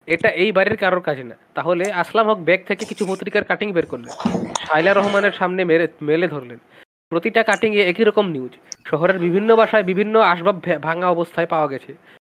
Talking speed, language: 85 wpm, Bengali